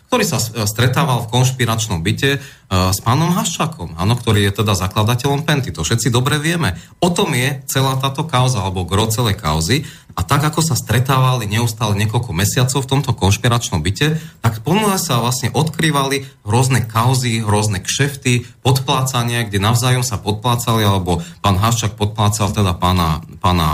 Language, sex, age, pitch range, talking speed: Slovak, male, 30-49, 105-135 Hz, 155 wpm